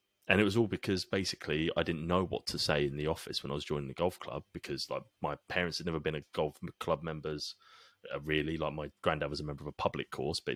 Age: 30-49